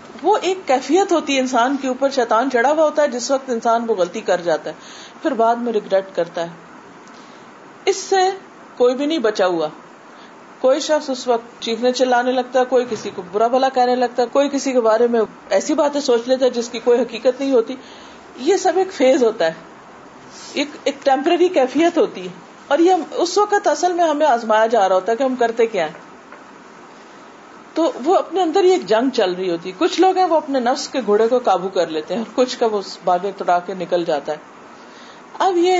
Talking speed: 215 wpm